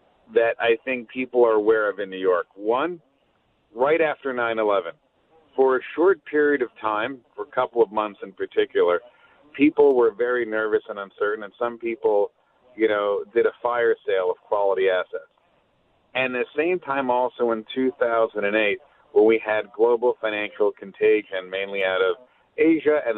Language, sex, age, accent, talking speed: English, male, 40-59, American, 165 wpm